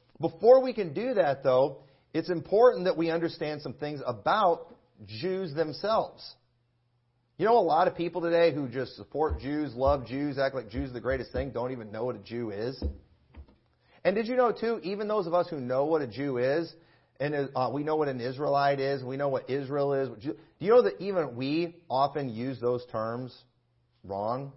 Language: English